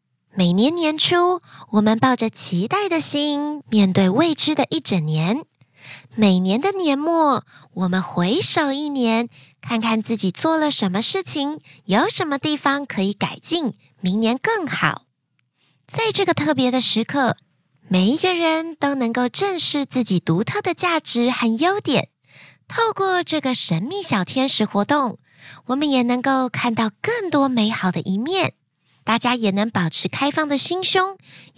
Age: 20-39